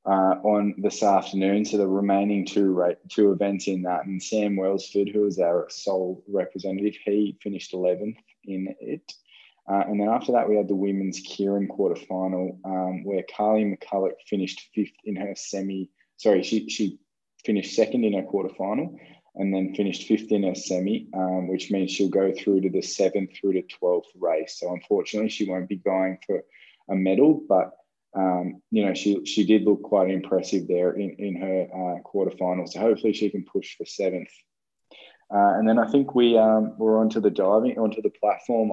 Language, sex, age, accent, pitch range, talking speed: English, male, 20-39, Australian, 95-105 Hz, 185 wpm